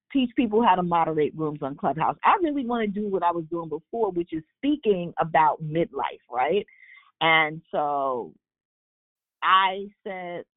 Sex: female